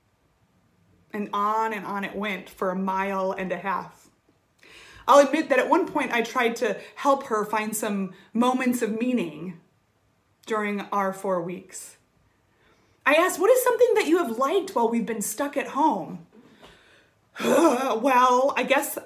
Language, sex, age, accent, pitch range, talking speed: English, female, 30-49, American, 190-240 Hz, 155 wpm